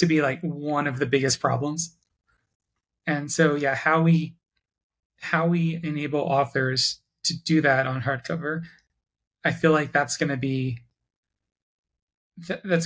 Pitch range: 135-165 Hz